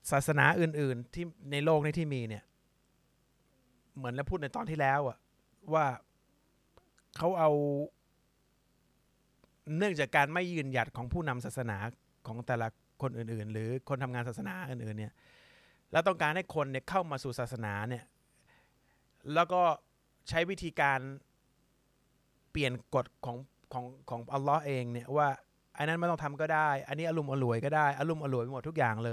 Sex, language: male, Thai